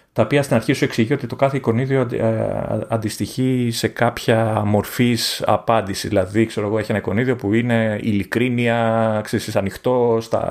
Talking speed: 150 wpm